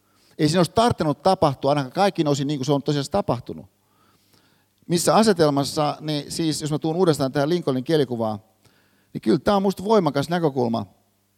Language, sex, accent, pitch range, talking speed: Finnish, male, native, 130-185 Hz, 170 wpm